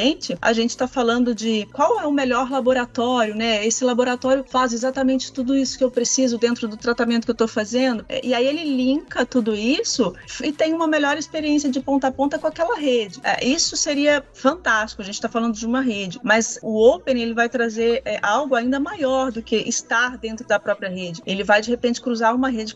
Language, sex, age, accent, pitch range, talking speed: Portuguese, female, 30-49, Brazilian, 205-255 Hz, 205 wpm